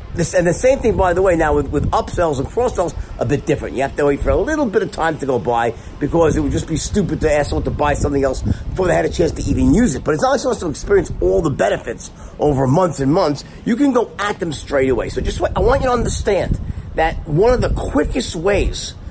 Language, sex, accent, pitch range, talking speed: English, male, American, 130-190 Hz, 270 wpm